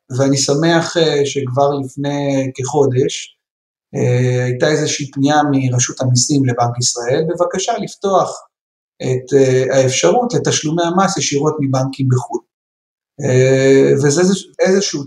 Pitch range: 135-175 Hz